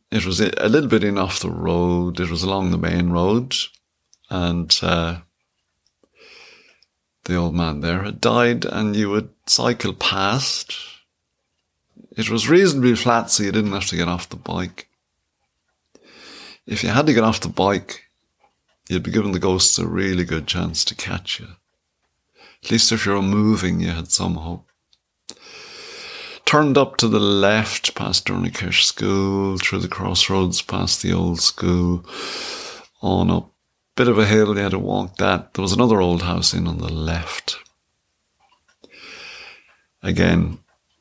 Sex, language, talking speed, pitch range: male, English, 160 wpm, 85-110 Hz